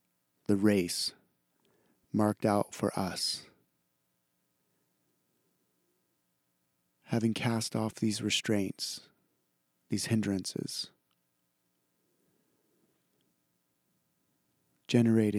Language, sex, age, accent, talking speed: English, male, 30-49, American, 55 wpm